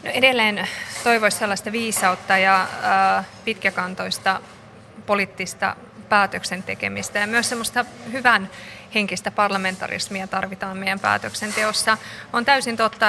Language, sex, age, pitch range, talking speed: Finnish, female, 20-39, 190-210 Hz, 95 wpm